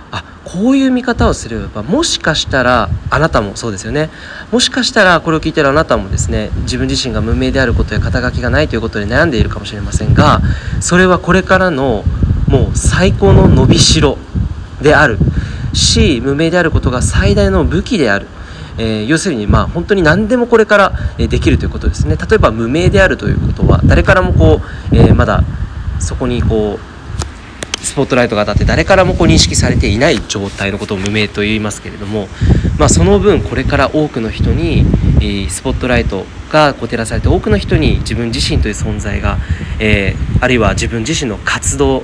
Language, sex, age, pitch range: Japanese, male, 40-59, 100-135 Hz